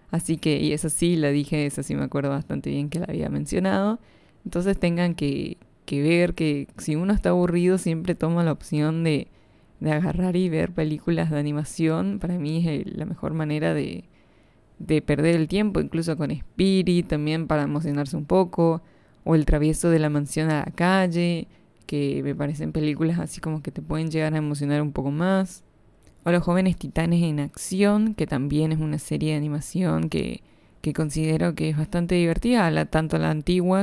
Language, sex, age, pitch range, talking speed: Spanish, female, 20-39, 150-170 Hz, 190 wpm